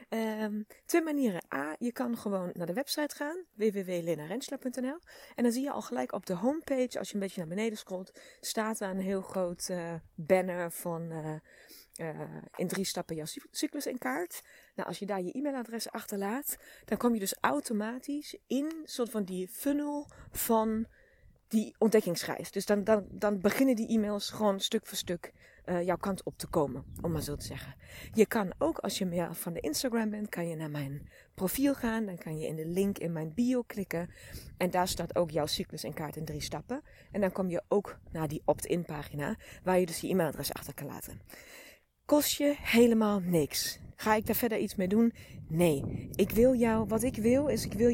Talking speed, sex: 205 wpm, female